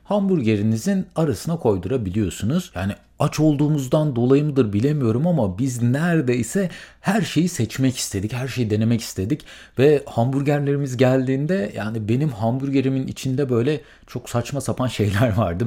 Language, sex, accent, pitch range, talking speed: Turkish, male, native, 105-150 Hz, 125 wpm